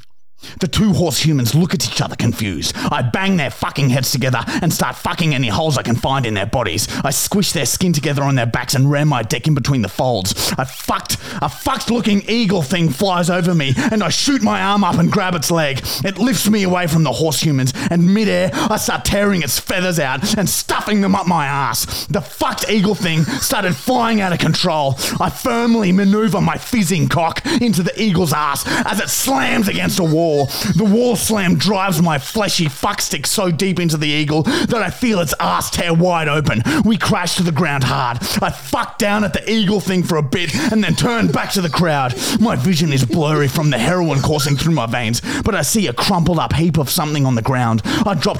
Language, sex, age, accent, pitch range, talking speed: English, male, 30-49, Australian, 145-205 Hz, 215 wpm